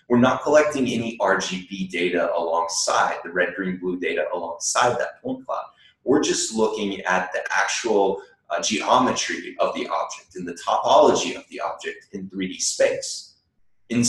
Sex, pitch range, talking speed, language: male, 100-140 Hz, 160 wpm, French